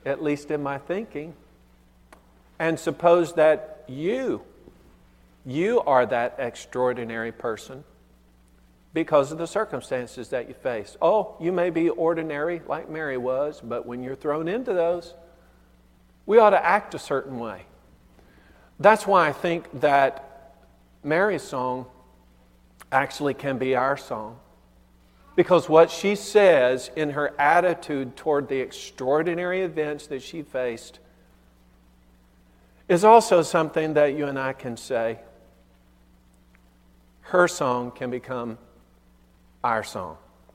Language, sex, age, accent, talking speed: English, male, 50-69, American, 125 wpm